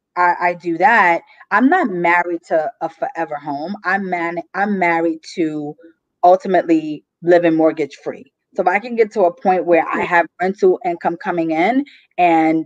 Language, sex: English, female